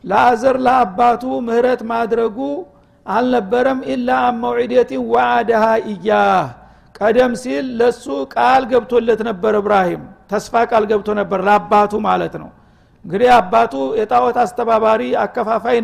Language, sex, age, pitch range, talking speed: Amharic, male, 50-69, 215-240 Hz, 115 wpm